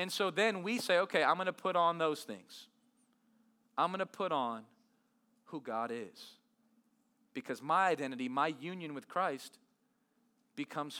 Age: 40-59